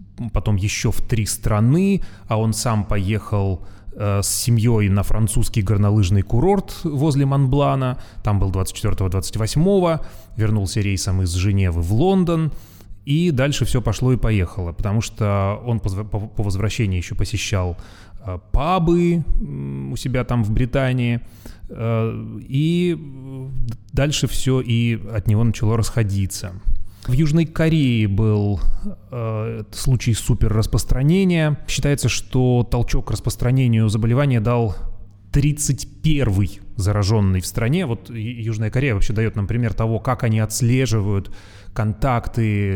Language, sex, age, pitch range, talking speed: Russian, male, 30-49, 100-130 Hz, 120 wpm